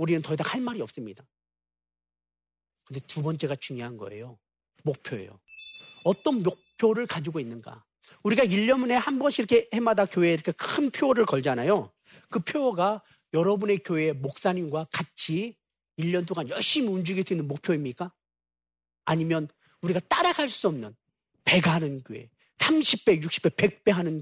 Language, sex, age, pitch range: Korean, male, 40-59, 130-220 Hz